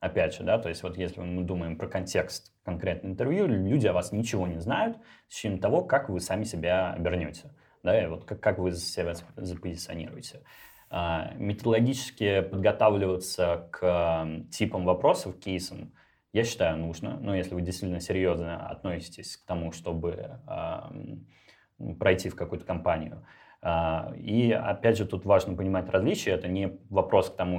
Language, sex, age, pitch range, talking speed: Russian, male, 20-39, 85-100 Hz, 150 wpm